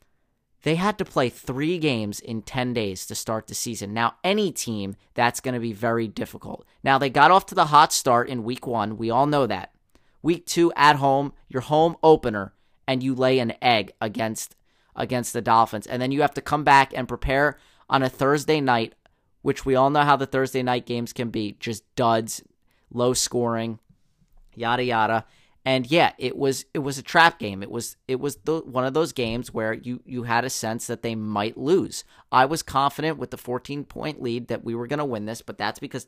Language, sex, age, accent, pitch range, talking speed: English, male, 30-49, American, 115-140 Hz, 215 wpm